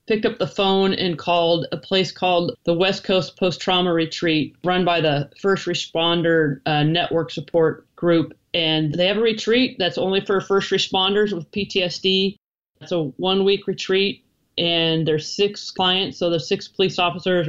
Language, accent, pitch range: English, American, 160-190 Hz